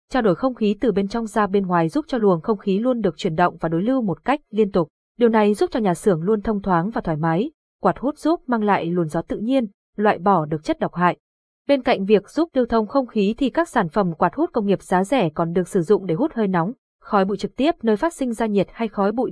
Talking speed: 285 wpm